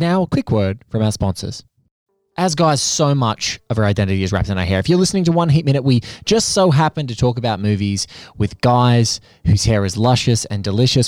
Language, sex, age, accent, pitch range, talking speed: English, male, 20-39, Australian, 105-150 Hz, 225 wpm